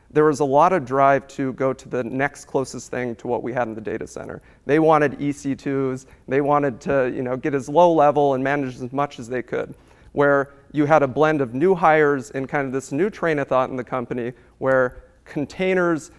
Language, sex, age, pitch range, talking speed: English, male, 40-59, 130-150 Hz, 220 wpm